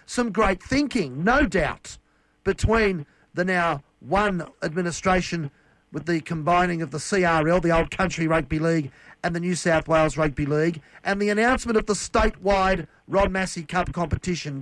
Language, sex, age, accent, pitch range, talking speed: English, male, 50-69, Australian, 165-205 Hz, 155 wpm